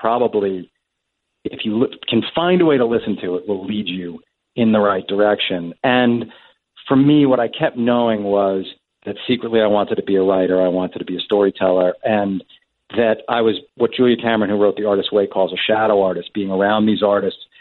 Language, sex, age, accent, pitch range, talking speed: English, male, 40-59, American, 100-130 Hz, 210 wpm